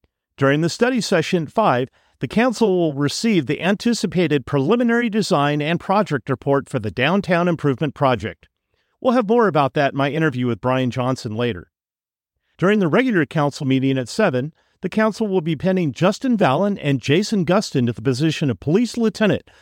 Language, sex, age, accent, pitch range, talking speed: English, male, 50-69, American, 130-200 Hz, 175 wpm